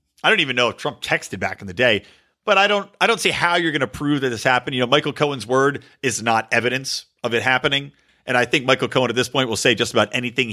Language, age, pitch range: English, 40-59, 125-195 Hz